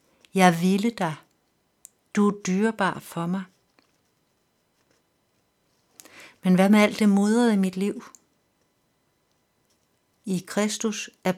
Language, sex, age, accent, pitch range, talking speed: Danish, female, 60-79, native, 180-210 Hz, 110 wpm